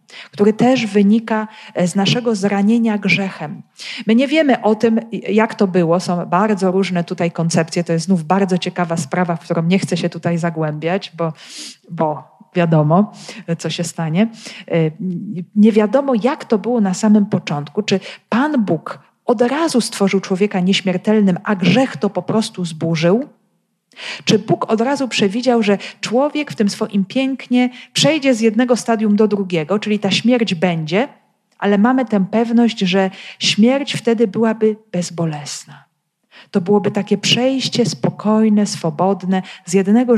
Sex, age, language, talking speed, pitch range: female, 40-59, Polish, 150 wpm, 180-230 Hz